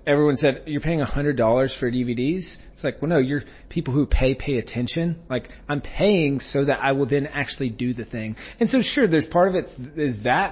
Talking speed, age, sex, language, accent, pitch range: 230 wpm, 30-49, male, English, American, 125-150 Hz